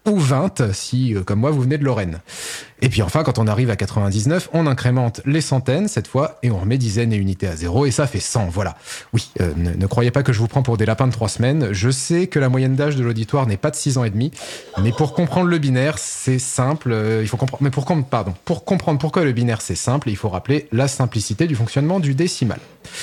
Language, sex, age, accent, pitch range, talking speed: French, male, 30-49, French, 115-160 Hz, 260 wpm